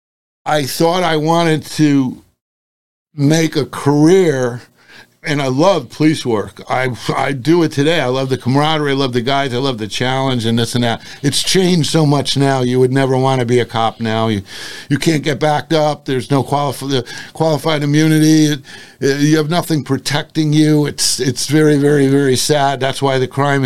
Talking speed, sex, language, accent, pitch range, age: 190 wpm, male, English, American, 130-155 Hz, 50-69